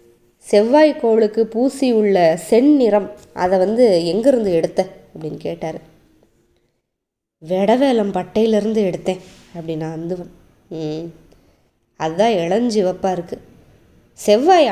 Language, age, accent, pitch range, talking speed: Tamil, 20-39, native, 180-245 Hz, 80 wpm